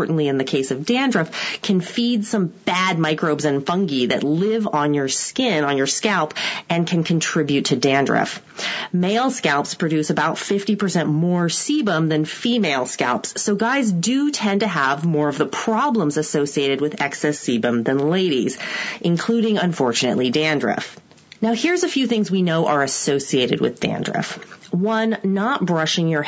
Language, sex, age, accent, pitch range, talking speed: English, female, 30-49, American, 150-220 Hz, 160 wpm